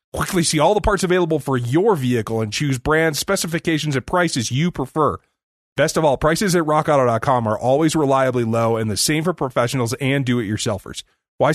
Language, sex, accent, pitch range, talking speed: English, male, American, 125-175 Hz, 180 wpm